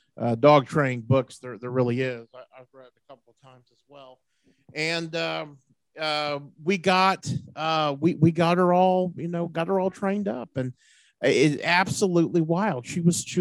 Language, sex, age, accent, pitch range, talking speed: English, male, 40-59, American, 125-155 Hz, 185 wpm